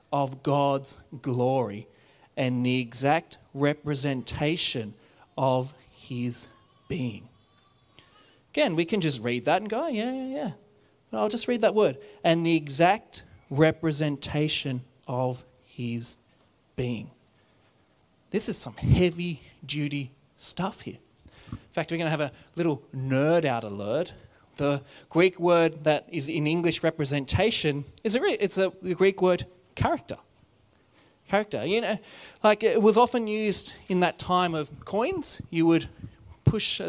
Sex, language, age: male, English, 30-49